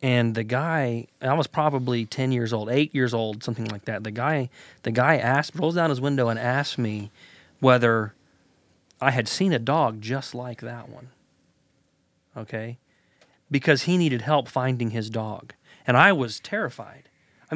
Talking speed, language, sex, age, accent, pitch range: 170 wpm, English, male, 40-59, American, 120-180 Hz